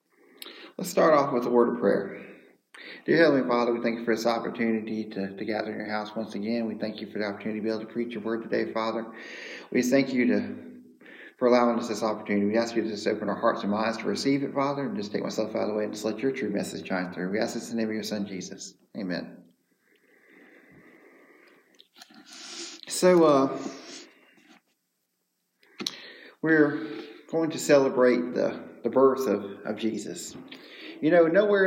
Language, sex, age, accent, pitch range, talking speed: English, male, 40-59, American, 110-140 Hz, 200 wpm